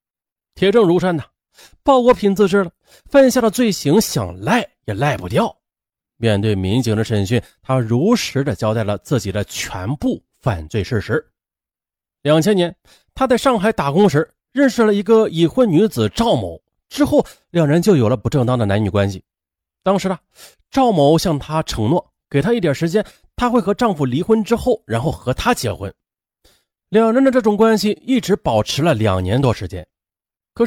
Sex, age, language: male, 30-49, Chinese